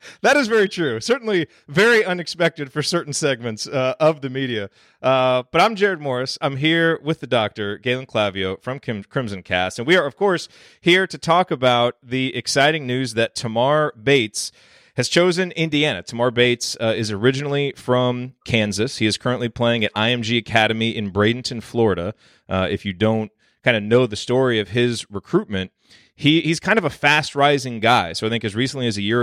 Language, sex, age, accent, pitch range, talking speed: English, male, 30-49, American, 110-135 Hz, 190 wpm